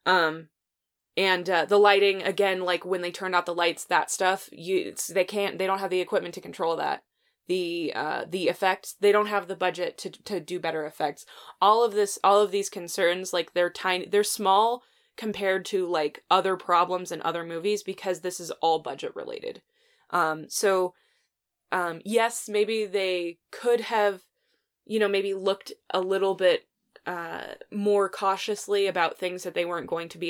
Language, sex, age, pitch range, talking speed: English, female, 20-39, 170-205 Hz, 185 wpm